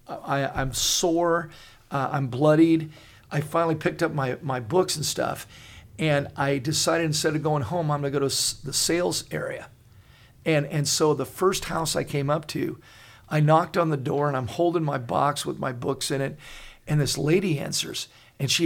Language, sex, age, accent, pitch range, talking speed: English, male, 50-69, American, 140-170 Hz, 195 wpm